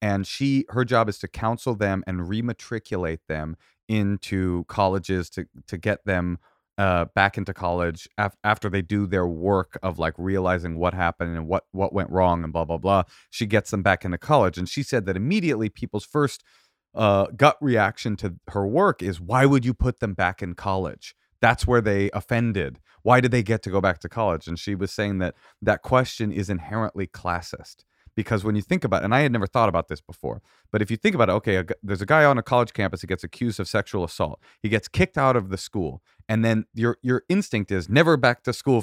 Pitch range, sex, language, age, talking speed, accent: 95-125 Hz, male, English, 30-49, 225 wpm, American